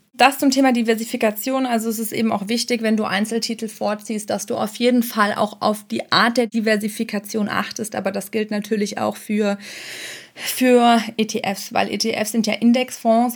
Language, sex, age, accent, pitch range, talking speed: German, female, 20-39, German, 200-225 Hz, 175 wpm